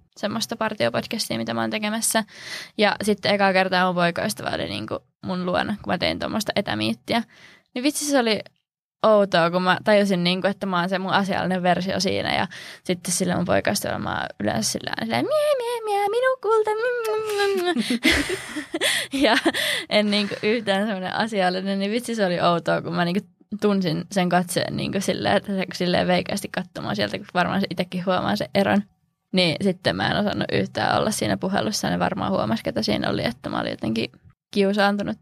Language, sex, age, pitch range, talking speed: Finnish, female, 20-39, 180-205 Hz, 180 wpm